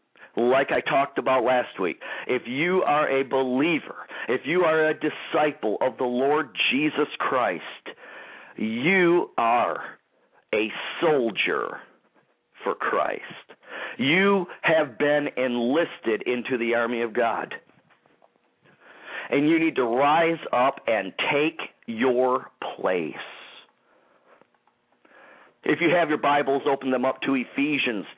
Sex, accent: male, American